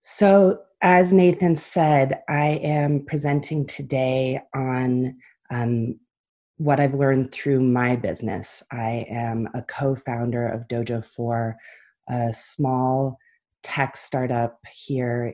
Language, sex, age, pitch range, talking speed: English, female, 30-49, 120-140 Hz, 105 wpm